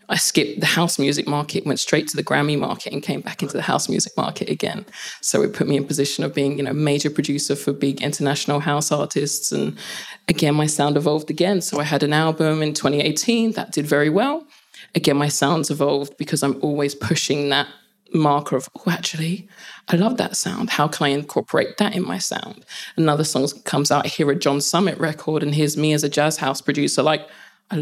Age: 20-39